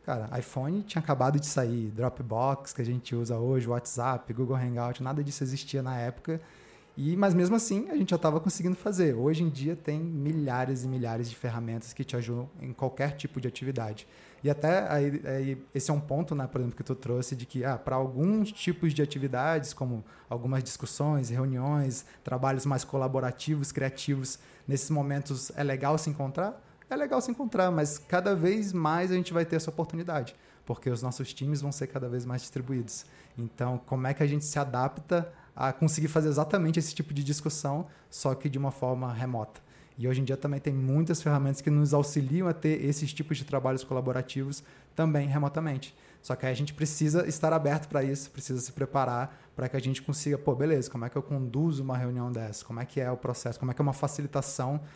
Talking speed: 205 wpm